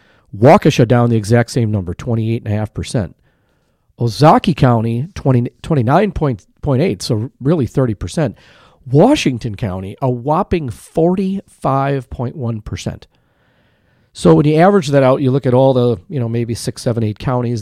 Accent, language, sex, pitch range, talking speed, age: American, English, male, 115-150 Hz, 175 wpm, 40-59